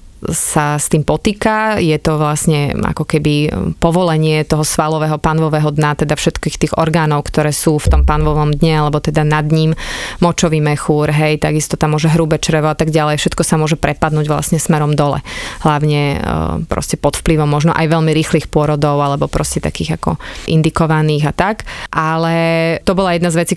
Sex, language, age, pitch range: female, Slovak, 30-49, 150-165 Hz